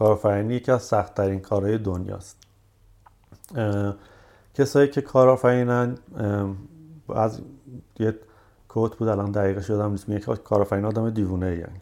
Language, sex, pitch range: Persian, male, 95-115 Hz